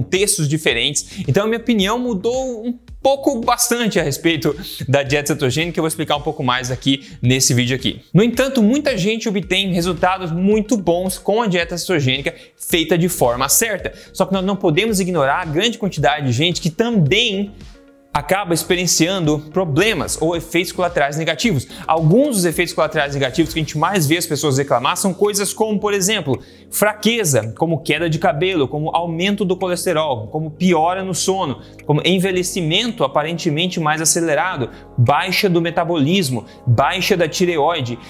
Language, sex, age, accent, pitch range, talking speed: Portuguese, male, 20-39, Brazilian, 155-195 Hz, 160 wpm